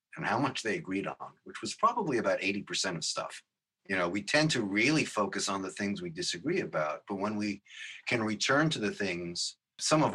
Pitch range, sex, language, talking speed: 105-155 Hz, male, English, 215 wpm